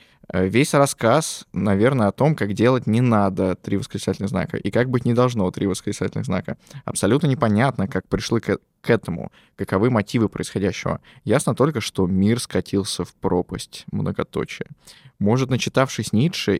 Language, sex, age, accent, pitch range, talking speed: Russian, male, 20-39, native, 100-120 Hz, 145 wpm